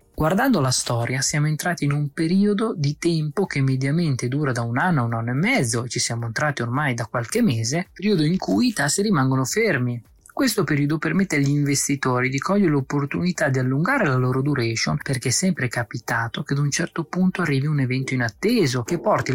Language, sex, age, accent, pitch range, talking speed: Italian, male, 20-39, native, 130-170 Hz, 200 wpm